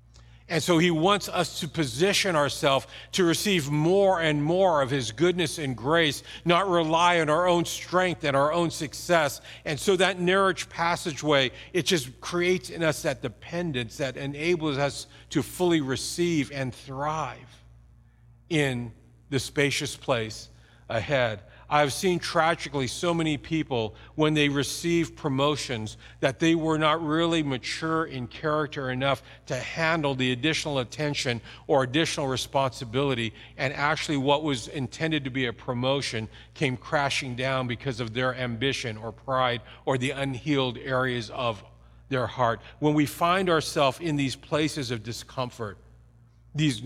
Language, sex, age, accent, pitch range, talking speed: English, male, 50-69, American, 125-160 Hz, 145 wpm